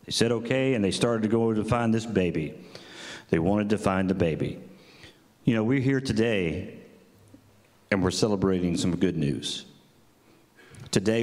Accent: American